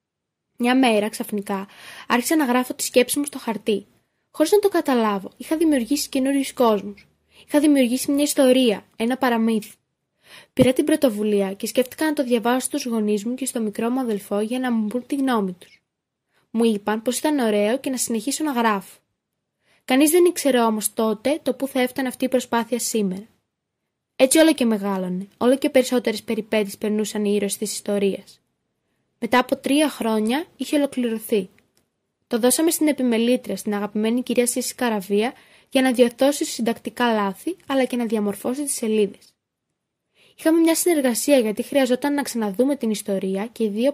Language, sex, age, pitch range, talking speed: Greek, female, 20-39, 215-270 Hz, 165 wpm